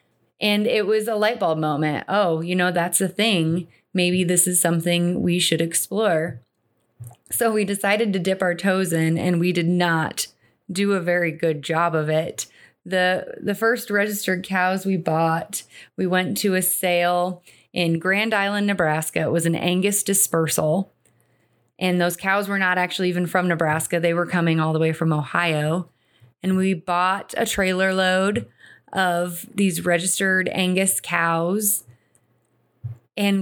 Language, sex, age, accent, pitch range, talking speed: English, female, 30-49, American, 165-190 Hz, 160 wpm